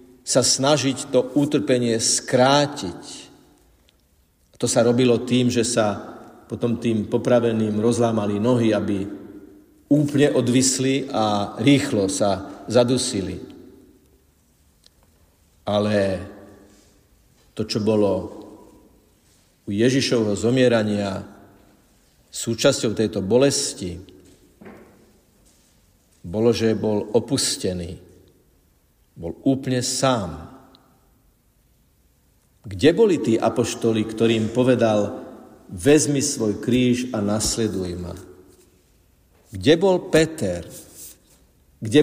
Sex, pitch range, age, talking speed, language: male, 100-140 Hz, 50-69, 80 wpm, Slovak